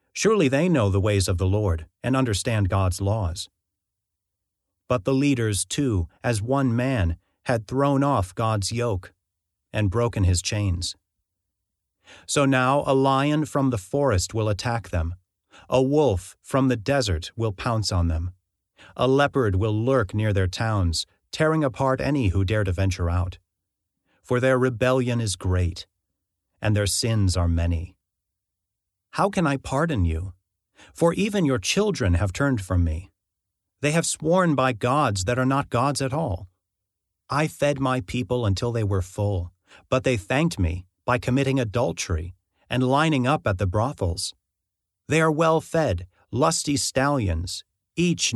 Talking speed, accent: 155 wpm, American